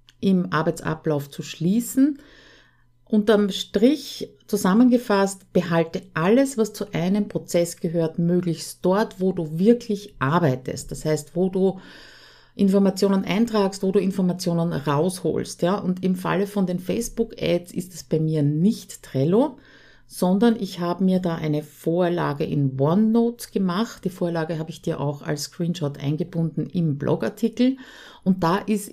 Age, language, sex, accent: 50-69, German, female, Austrian